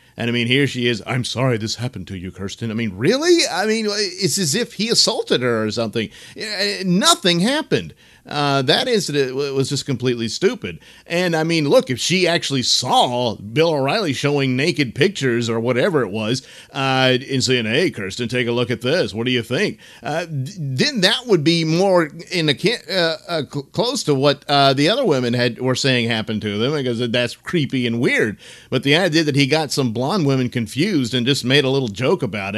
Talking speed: 205 wpm